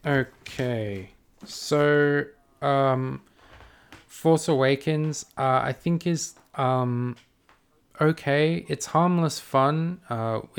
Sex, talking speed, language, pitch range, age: male, 85 wpm, English, 100-135 Hz, 20-39